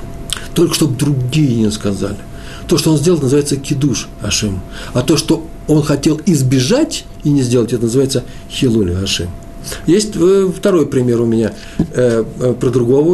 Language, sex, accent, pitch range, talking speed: Russian, male, native, 115-155 Hz, 150 wpm